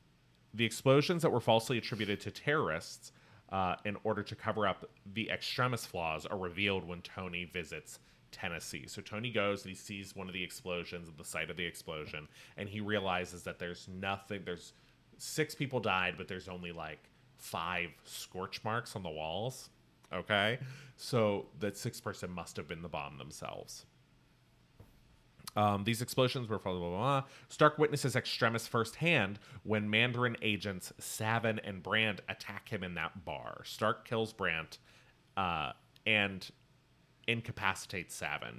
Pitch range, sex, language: 95-115 Hz, male, English